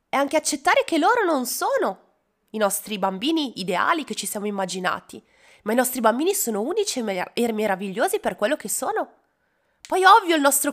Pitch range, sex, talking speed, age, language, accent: 190-265 Hz, female, 180 wpm, 20-39, Italian, native